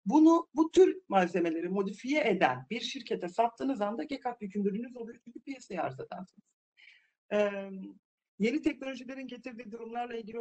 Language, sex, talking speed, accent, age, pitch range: Turkish, male, 125 wpm, native, 50-69, 180-235 Hz